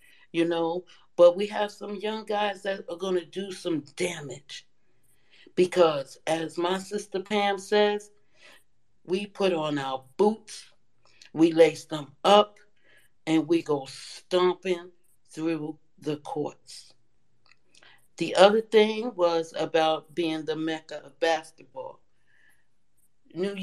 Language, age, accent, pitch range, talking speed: English, 60-79, American, 150-185 Hz, 120 wpm